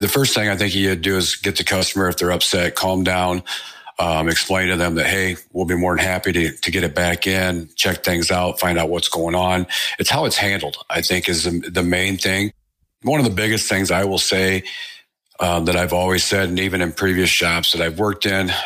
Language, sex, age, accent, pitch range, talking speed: English, male, 50-69, American, 90-100 Hz, 235 wpm